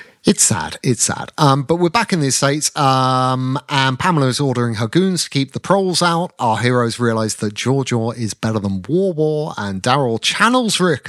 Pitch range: 115-155 Hz